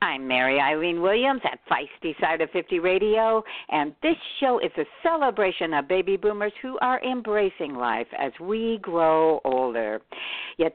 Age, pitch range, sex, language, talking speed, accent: 60-79, 150-200 Hz, female, English, 155 wpm, American